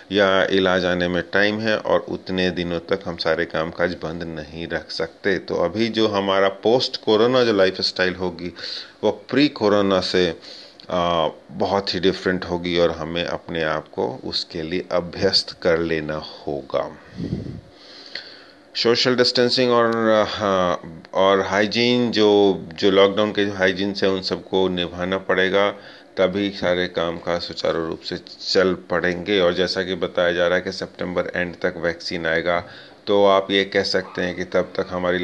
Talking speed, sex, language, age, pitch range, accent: 155 wpm, male, Hindi, 30-49, 90-110 Hz, native